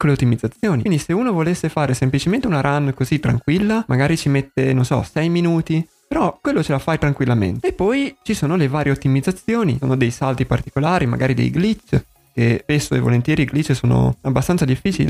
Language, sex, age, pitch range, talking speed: Italian, male, 20-39, 125-165 Hz, 190 wpm